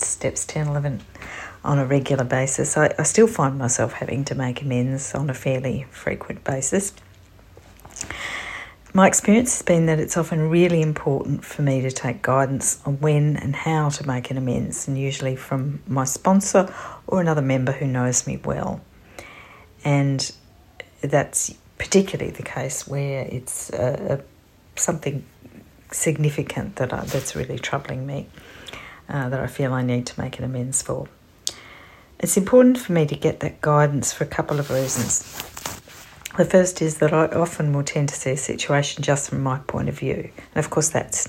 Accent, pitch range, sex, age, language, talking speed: Australian, 130-155 Hz, female, 40-59, English, 170 wpm